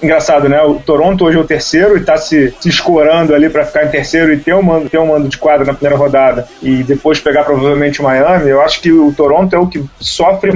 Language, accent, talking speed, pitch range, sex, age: Portuguese, Brazilian, 255 wpm, 145-175 Hz, male, 20-39